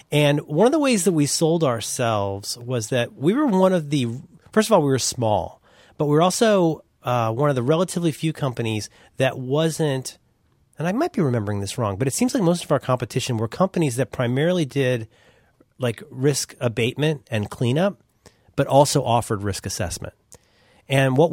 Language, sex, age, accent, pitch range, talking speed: English, male, 30-49, American, 115-165 Hz, 190 wpm